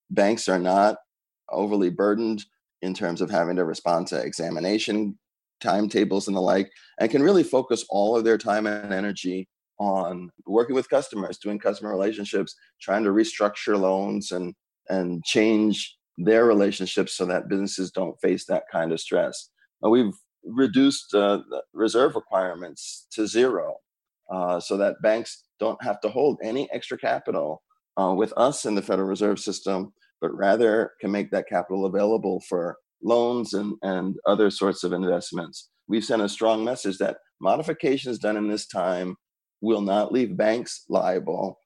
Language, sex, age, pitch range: English, male, 30-49, 95-110 Hz